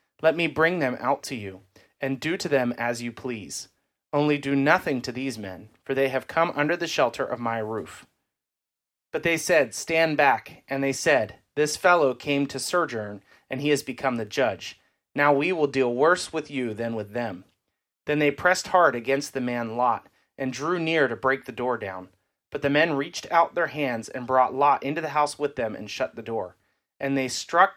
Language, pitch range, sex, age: English, 125-155 Hz, male, 30-49